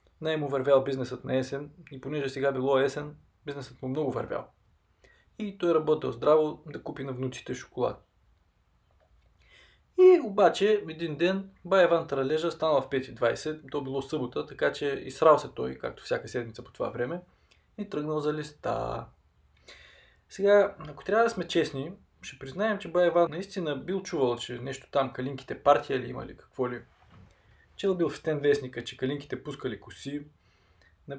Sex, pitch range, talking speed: male, 125-170 Hz, 165 wpm